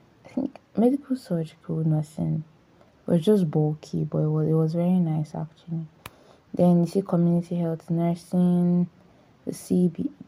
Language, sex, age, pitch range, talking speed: English, female, 20-39, 160-190 Hz, 140 wpm